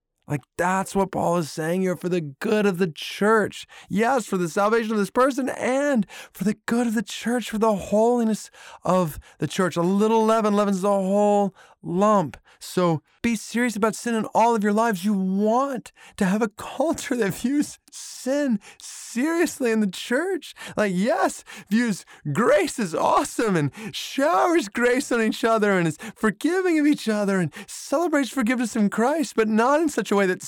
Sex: male